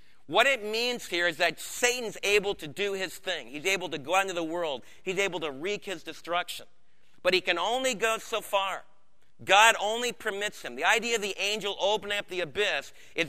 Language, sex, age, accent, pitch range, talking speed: English, male, 40-59, American, 170-215 Hz, 210 wpm